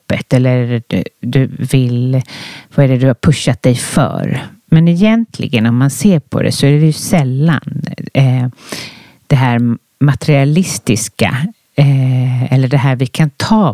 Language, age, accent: Swedish, 40-59, native